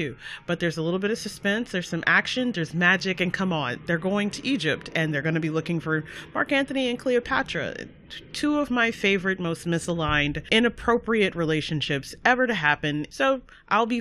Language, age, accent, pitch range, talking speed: English, 30-49, American, 150-195 Hz, 185 wpm